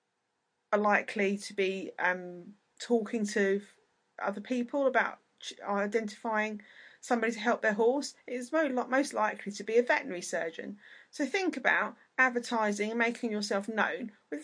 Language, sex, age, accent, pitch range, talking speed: English, female, 30-49, British, 200-245 Hz, 135 wpm